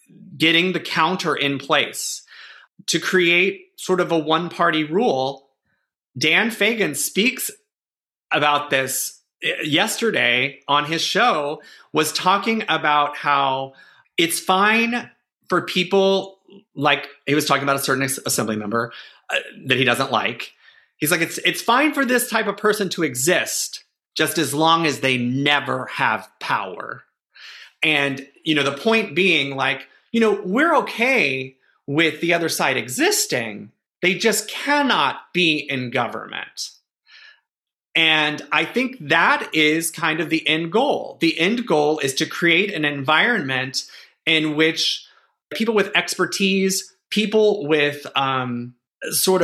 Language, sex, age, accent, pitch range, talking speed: English, male, 30-49, American, 145-200 Hz, 135 wpm